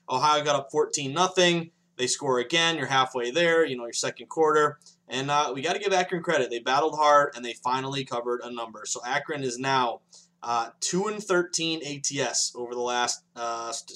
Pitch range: 120-165 Hz